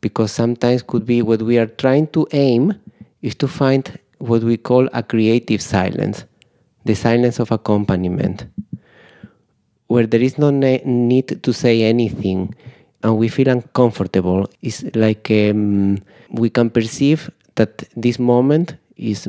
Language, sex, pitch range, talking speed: Slovak, male, 110-135 Hz, 140 wpm